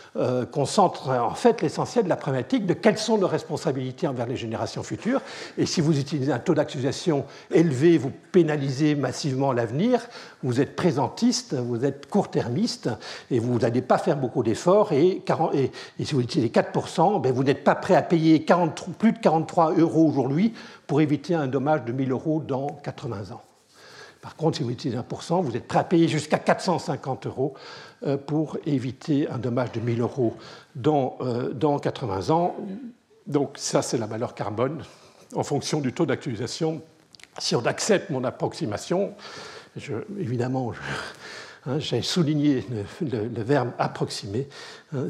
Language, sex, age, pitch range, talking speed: French, male, 60-79, 135-180 Hz, 160 wpm